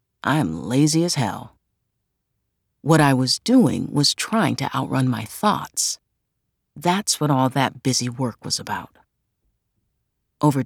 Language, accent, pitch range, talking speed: English, American, 125-160 Hz, 130 wpm